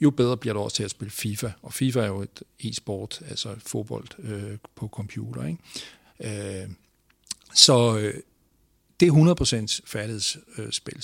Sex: male